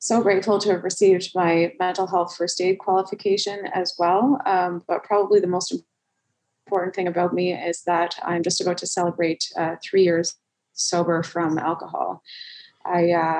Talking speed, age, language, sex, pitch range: 160 wpm, 20-39, English, female, 170-190 Hz